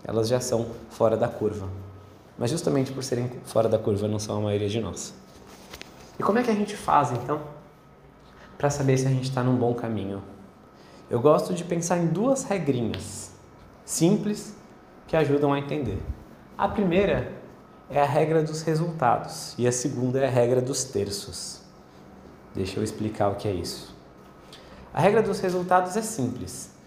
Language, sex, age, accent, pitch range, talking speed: Portuguese, male, 20-39, Brazilian, 110-150 Hz, 170 wpm